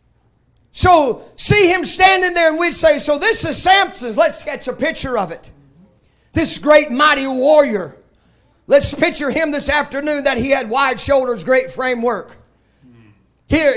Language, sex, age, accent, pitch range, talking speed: English, male, 40-59, American, 185-290 Hz, 155 wpm